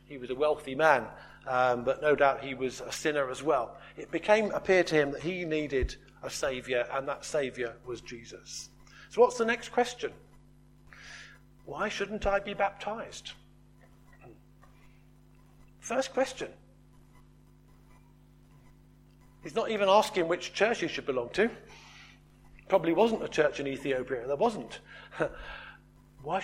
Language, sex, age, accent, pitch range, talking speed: English, male, 50-69, British, 145-220 Hz, 140 wpm